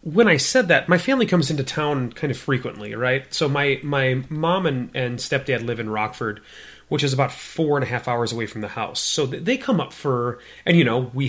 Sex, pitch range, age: male, 110-140 Hz, 30-49